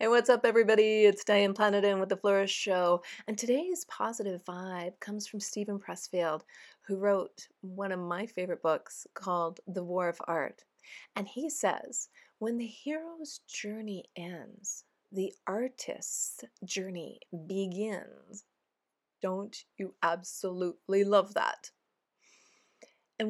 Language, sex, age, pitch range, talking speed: English, female, 30-49, 185-220 Hz, 125 wpm